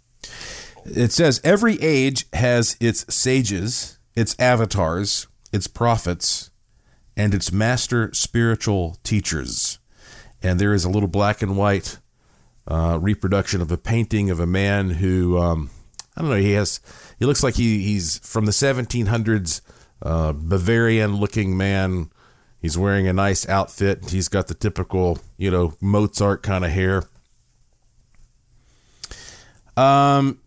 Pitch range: 100-125 Hz